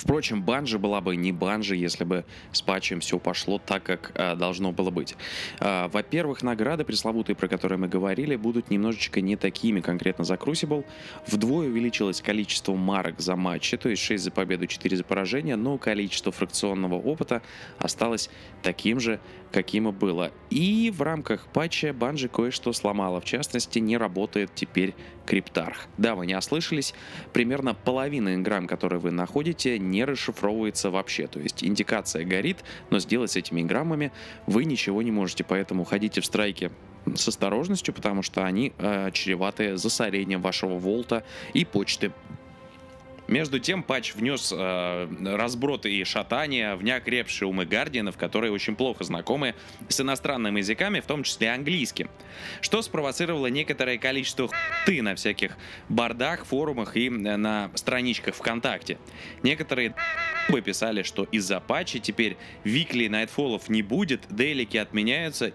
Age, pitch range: 20-39, 95-125 Hz